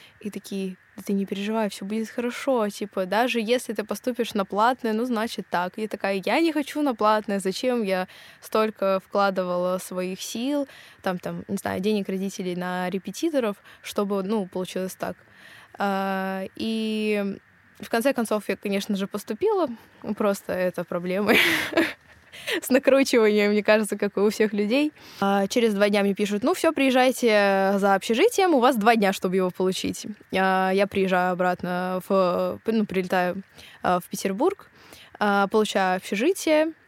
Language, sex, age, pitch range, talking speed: Russian, female, 20-39, 190-230 Hz, 145 wpm